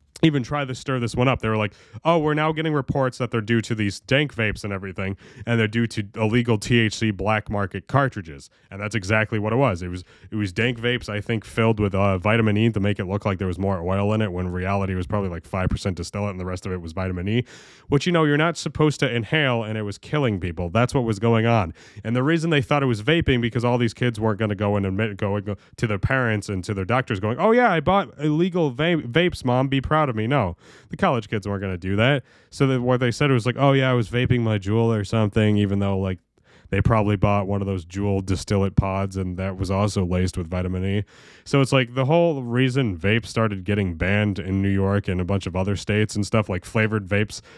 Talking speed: 260 wpm